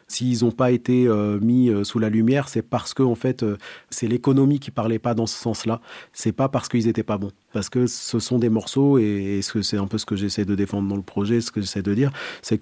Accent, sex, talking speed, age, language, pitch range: French, male, 285 wpm, 40-59, French, 100-115 Hz